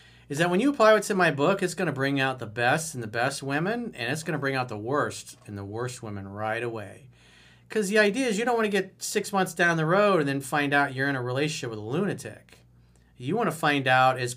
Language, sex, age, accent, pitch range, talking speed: English, male, 40-59, American, 115-155 Hz, 270 wpm